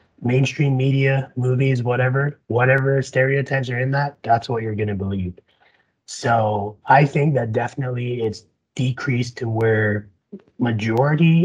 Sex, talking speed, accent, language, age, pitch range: male, 125 wpm, American, English, 30-49, 105-130 Hz